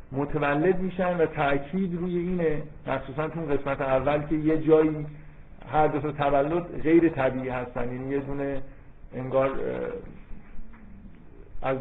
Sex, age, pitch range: male, 50-69, 130-155 Hz